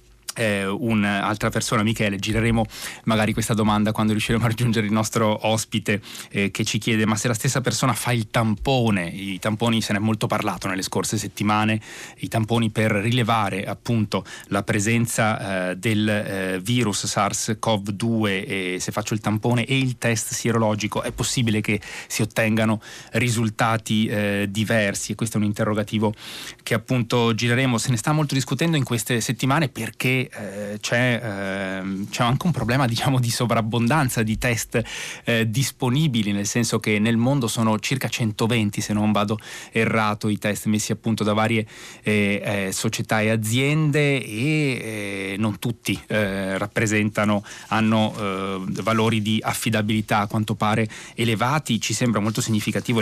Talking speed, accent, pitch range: 155 wpm, native, 105-120 Hz